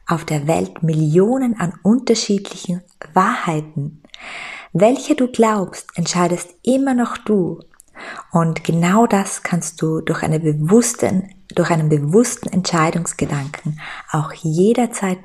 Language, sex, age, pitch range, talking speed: German, female, 20-39, 160-200 Hz, 100 wpm